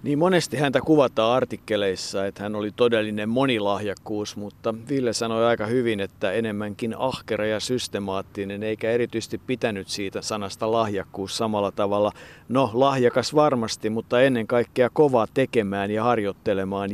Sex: male